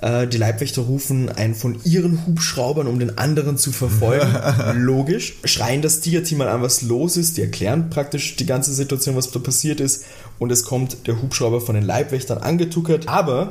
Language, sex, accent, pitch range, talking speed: German, male, German, 115-145 Hz, 180 wpm